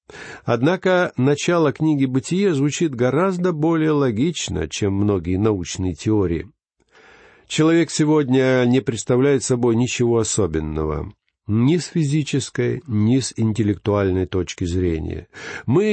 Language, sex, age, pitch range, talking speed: Russian, male, 50-69, 105-170 Hz, 105 wpm